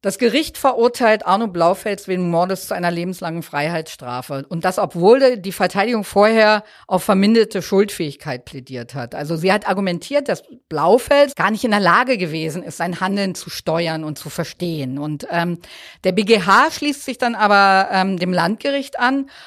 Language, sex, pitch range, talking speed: German, female, 170-235 Hz, 165 wpm